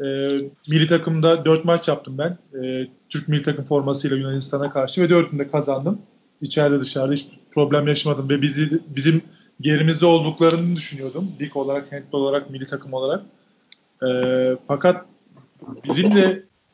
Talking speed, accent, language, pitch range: 135 wpm, native, Turkish, 140-175 Hz